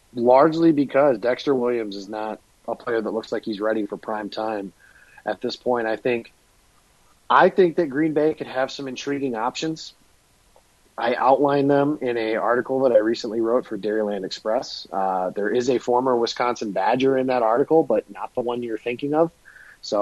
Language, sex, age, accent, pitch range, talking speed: English, male, 30-49, American, 110-135 Hz, 185 wpm